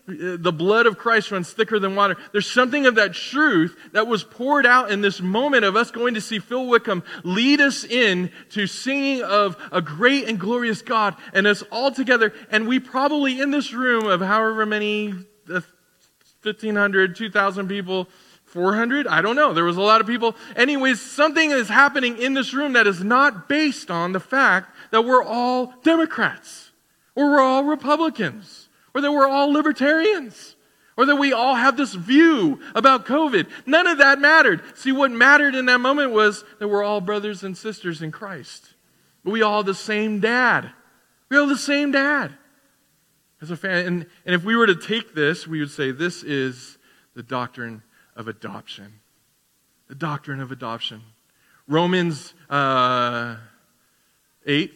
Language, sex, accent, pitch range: English, male, American, 180-265 Hz